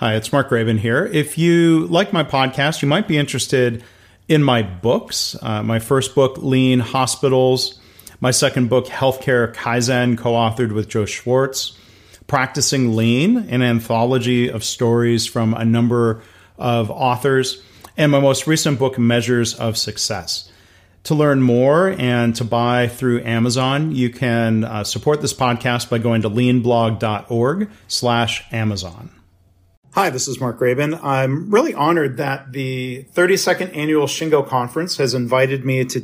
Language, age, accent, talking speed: English, 40-59, American, 150 wpm